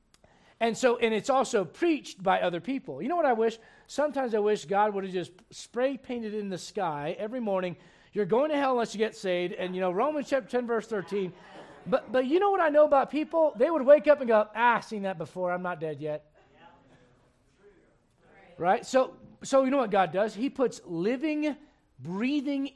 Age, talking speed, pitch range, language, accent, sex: 40-59, 210 wpm, 195-270 Hz, English, American, male